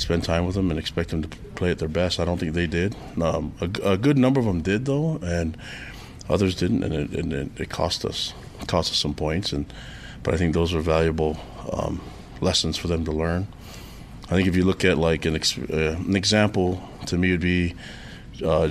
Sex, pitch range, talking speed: male, 80-95 Hz, 230 wpm